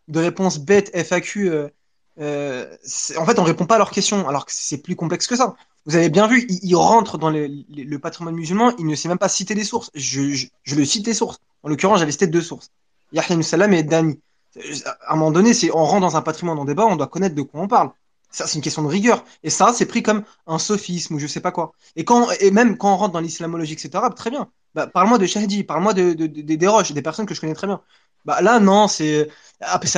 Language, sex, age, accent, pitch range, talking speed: French, male, 20-39, French, 160-210 Hz, 270 wpm